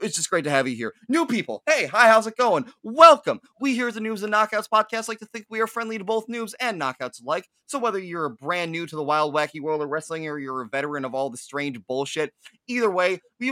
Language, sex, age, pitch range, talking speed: English, male, 20-39, 155-225 Hz, 260 wpm